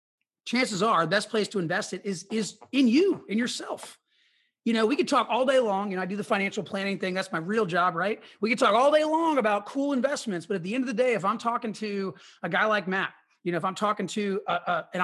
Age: 30-49